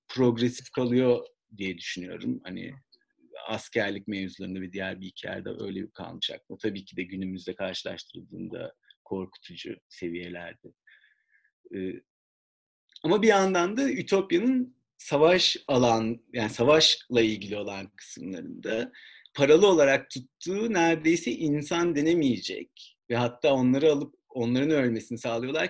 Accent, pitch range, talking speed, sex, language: native, 115-165 Hz, 105 wpm, male, Turkish